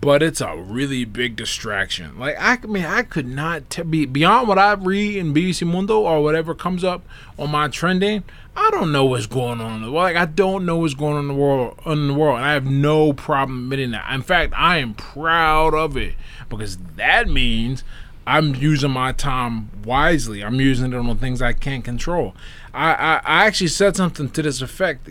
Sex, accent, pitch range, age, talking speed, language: male, American, 120-150 Hz, 20-39, 205 wpm, English